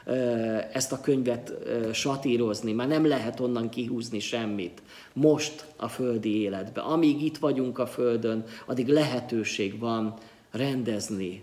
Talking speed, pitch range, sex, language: 120 wpm, 115-145 Hz, male, Hungarian